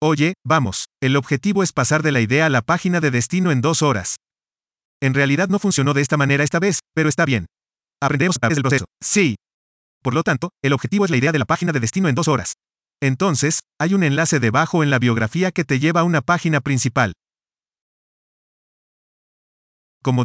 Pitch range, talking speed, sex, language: 130-170 Hz, 200 wpm, male, English